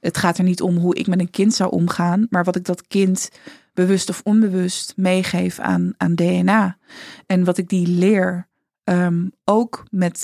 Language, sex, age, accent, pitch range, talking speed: Dutch, female, 20-39, Dutch, 175-195 Hz, 180 wpm